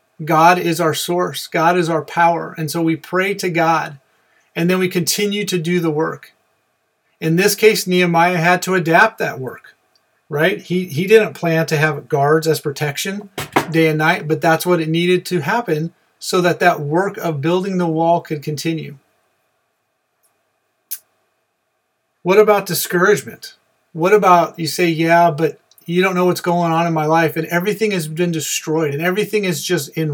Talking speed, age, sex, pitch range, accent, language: 175 wpm, 40-59, male, 160-185 Hz, American, English